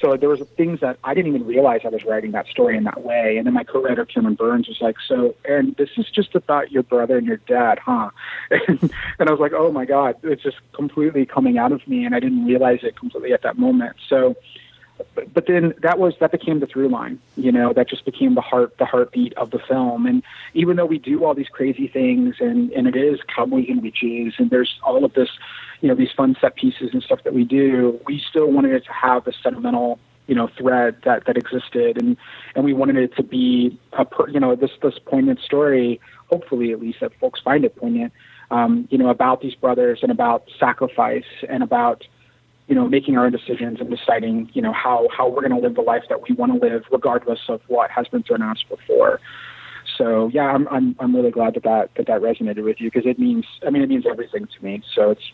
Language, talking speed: English, 235 wpm